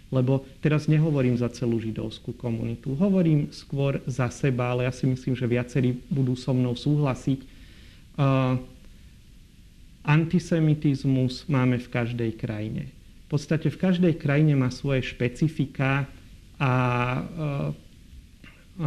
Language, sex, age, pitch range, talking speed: Slovak, male, 40-59, 125-150 Hz, 120 wpm